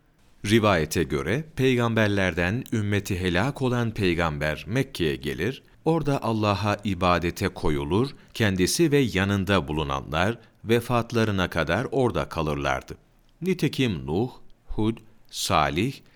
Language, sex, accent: Turkish, male, native